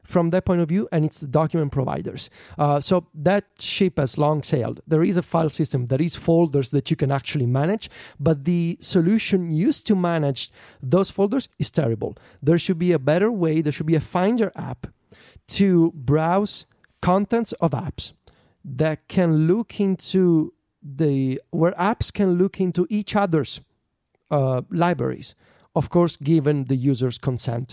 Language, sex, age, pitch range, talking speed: English, male, 40-59, 155-195 Hz, 165 wpm